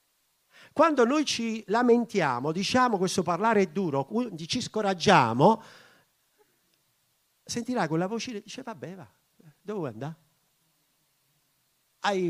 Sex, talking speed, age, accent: male, 105 wpm, 50-69, native